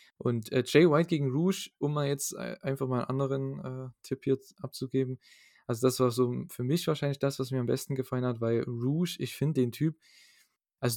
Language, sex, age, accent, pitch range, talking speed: German, male, 20-39, German, 115-135 Hz, 210 wpm